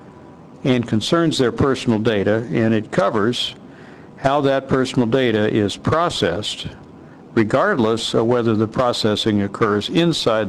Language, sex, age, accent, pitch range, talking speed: English, male, 60-79, American, 105-135 Hz, 120 wpm